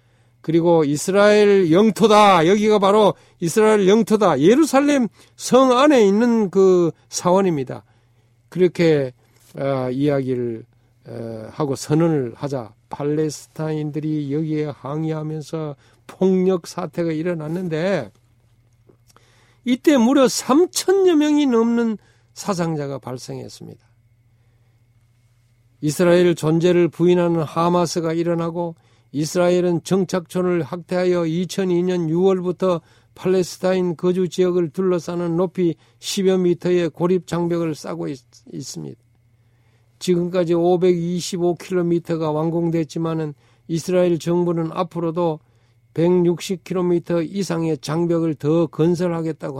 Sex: male